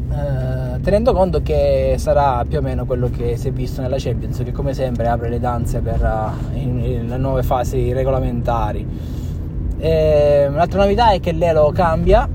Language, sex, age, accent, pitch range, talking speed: Italian, male, 20-39, native, 115-135 Hz, 150 wpm